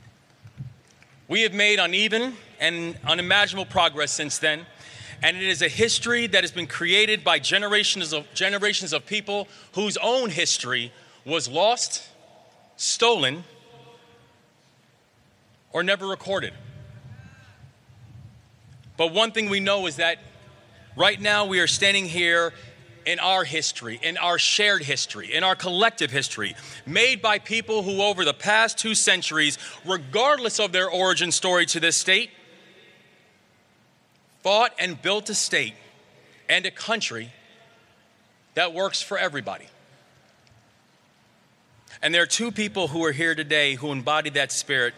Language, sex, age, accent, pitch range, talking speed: English, male, 30-49, American, 130-195 Hz, 130 wpm